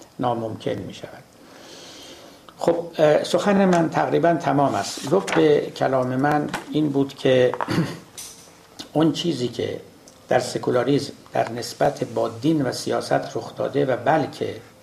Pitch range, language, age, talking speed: 125-155 Hz, Persian, 60-79, 125 wpm